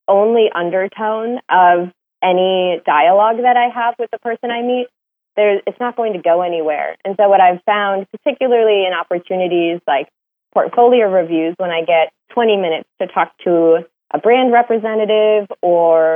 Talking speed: 155 wpm